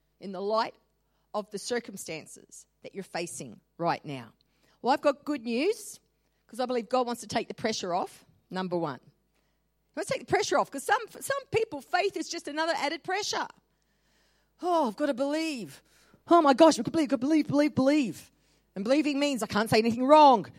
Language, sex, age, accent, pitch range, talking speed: English, female, 40-59, Australian, 245-370 Hz, 190 wpm